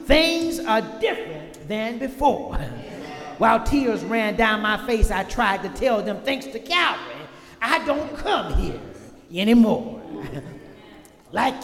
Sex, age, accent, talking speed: male, 40-59, American, 130 wpm